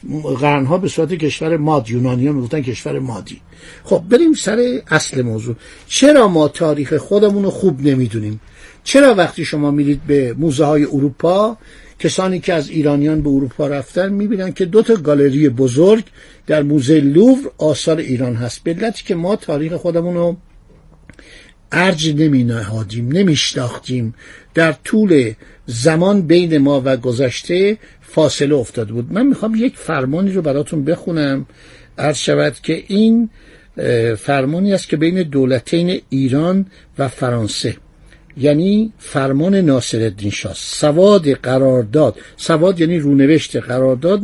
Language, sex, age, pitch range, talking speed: Persian, male, 60-79, 135-175 Hz, 130 wpm